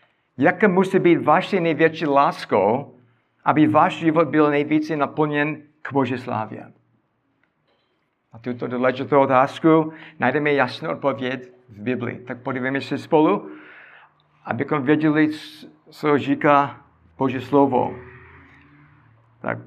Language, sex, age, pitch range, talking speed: Czech, male, 60-79, 125-155 Hz, 105 wpm